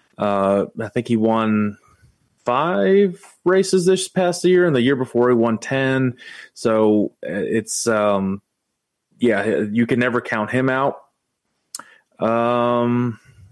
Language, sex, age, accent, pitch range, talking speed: English, male, 30-49, American, 110-125 Hz, 125 wpm